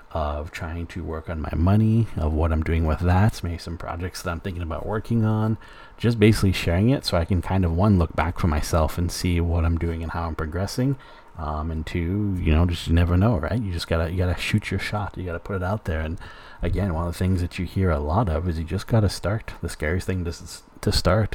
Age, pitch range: 30-49, 80-100 Hz